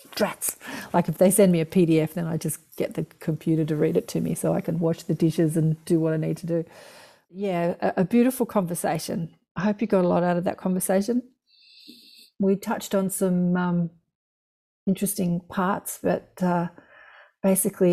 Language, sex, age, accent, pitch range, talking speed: English, female, 40-59, Australian, 165-195 Hz, 185 wpm